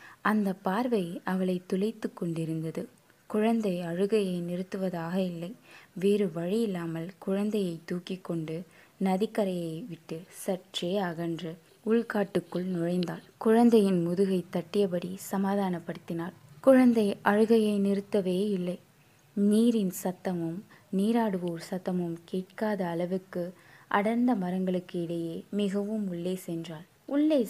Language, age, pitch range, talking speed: Tamil, 20-39, 170-205 Hz, 90 wpm